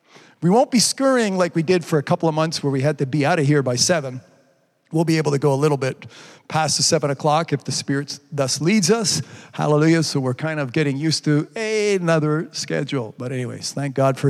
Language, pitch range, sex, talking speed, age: English, 140-180 Hz, male, 235 wpm, 40-59